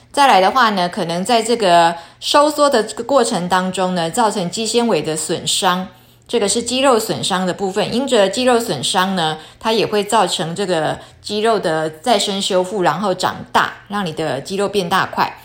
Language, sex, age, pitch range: Chinese, female, 20-39, 175-240 Hz